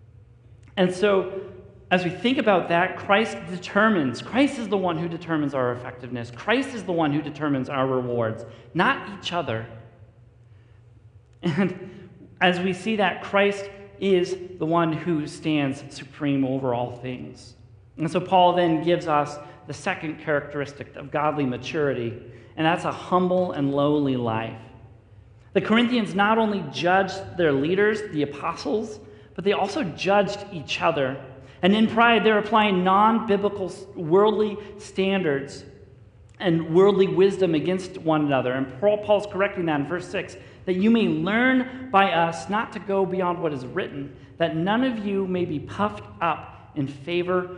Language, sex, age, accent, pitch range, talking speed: English, male, 40-59, American, 135-195 Hz, 155 wpm